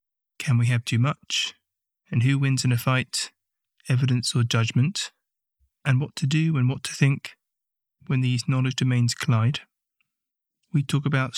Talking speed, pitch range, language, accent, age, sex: 160 wpm, 125-145 Hz, English, British, 20-39, male